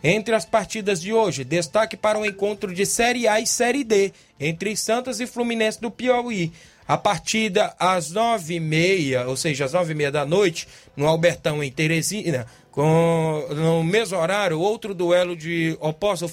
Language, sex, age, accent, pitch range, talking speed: Portuguese, male, 20-39, Brazilian, 160-210 Hz, 180 wpm